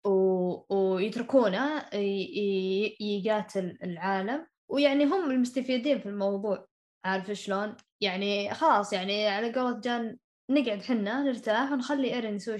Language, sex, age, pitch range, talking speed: Arabic, female, 10-29, 200-260 Hz, 120 wpm